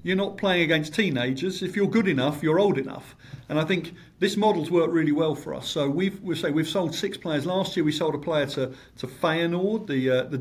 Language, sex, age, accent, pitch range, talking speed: English, male, 50-69, British, 140-180 Hz, 240 wpm